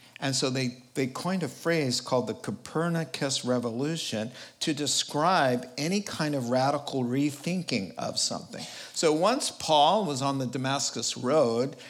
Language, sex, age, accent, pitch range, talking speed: English, male, 50-69, American, 120-140 Hz, 140 wpm